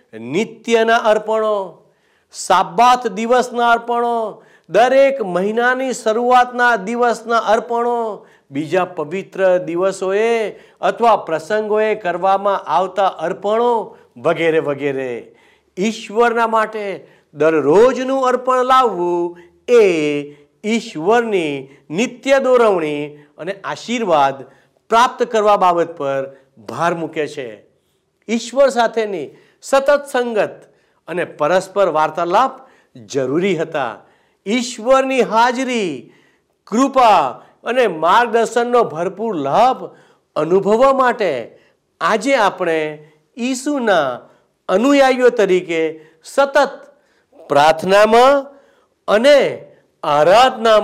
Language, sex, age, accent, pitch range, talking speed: Gujarati, male, 50-69, native, 175-250 Hz, 75 wpm